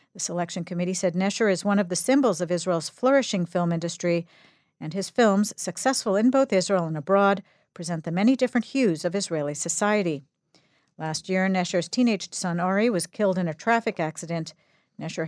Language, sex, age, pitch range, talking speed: English, female, 50-69, 170-215 Hz, 175 wpm